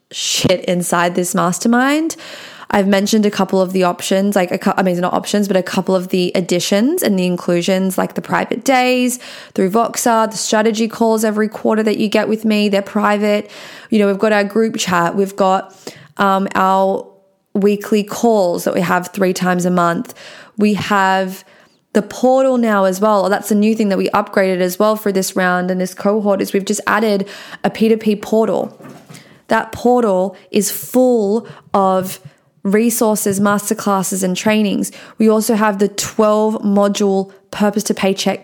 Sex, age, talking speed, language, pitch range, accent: female, 20-39, 170 wpm, English, 185-215 Hz, Australian